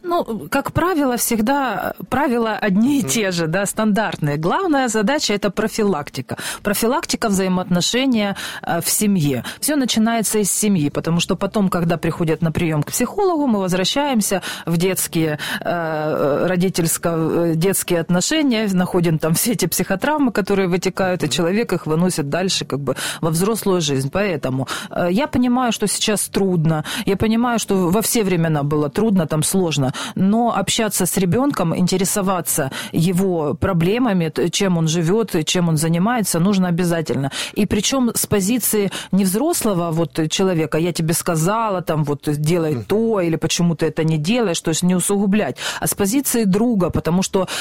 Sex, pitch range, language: female, 170-220 Hz, Ukrainian